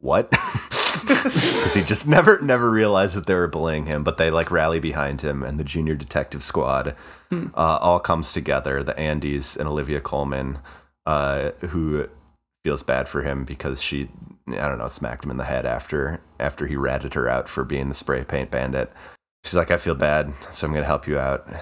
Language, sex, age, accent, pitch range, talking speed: English, male, 30-49, American, 70-85 Hz, 200 wpm